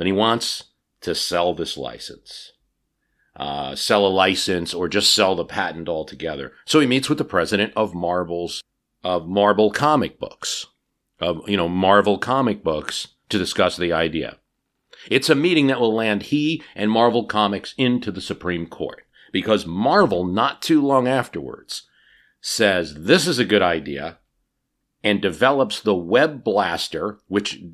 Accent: American